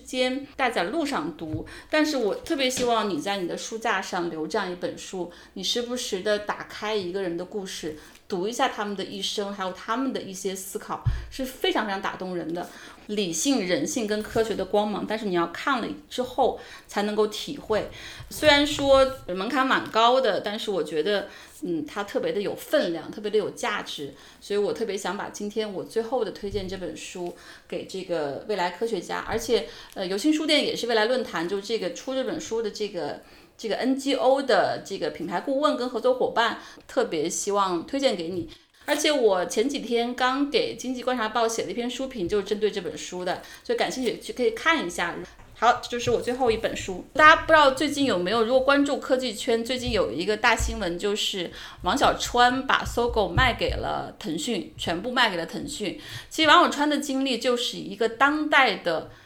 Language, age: Chinese, 30-49